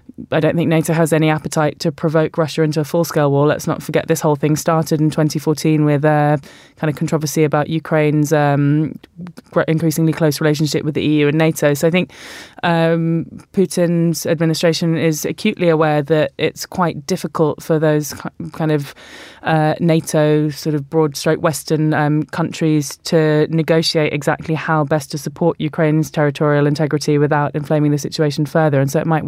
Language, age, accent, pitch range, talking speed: English, 20-39, British, 150-165 Hz, 170 wpm